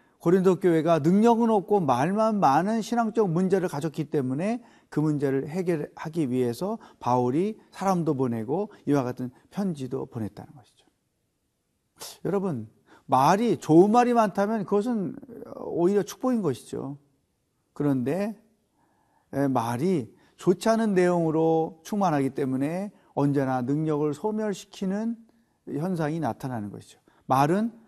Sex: male